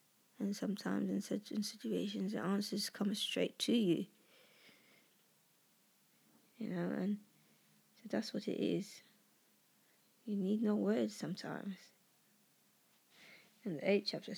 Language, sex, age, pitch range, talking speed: English, female, 20-39, 190-220 Hz, 115 wpm